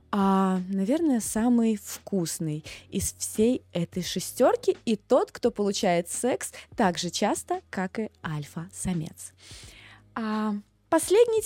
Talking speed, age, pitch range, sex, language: 105 wpm, 20-39, 185-290 Hz, female, Russian